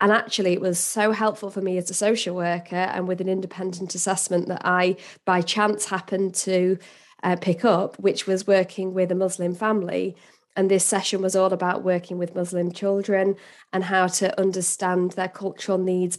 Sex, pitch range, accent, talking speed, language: female, 185-215 Hz, British, 185 wpm, English